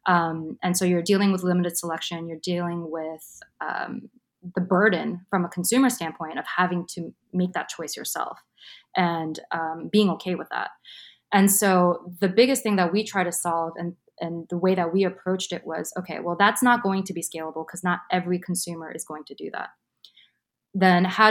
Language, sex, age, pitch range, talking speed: English, female, 20-39, 165-195 Hz, 195 wpm